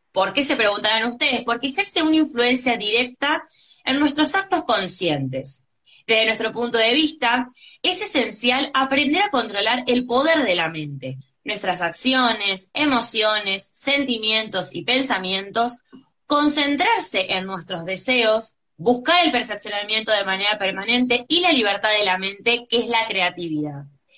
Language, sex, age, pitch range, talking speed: Spanish, female, 20-39, 205-280 Hz, 135 wpm